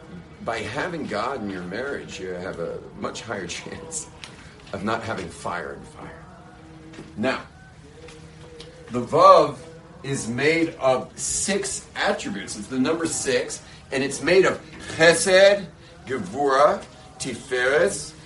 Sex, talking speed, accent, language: male, 120 wpm, American, English